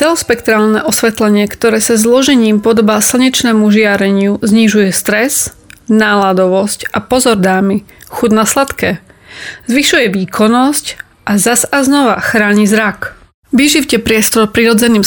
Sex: female